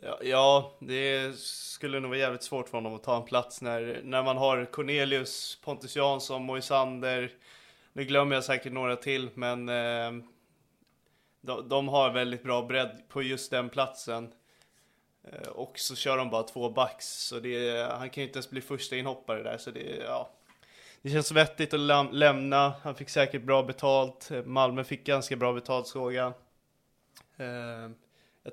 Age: 20-39